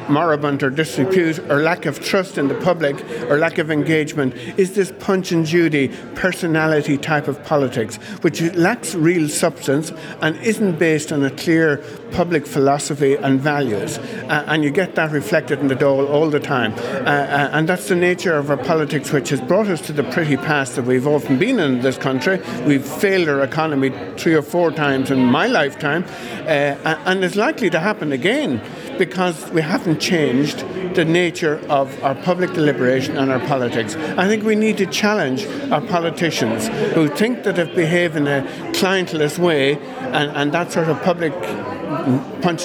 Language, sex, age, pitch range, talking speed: English, male, 50-69, 145-180 Hz, 175 wpm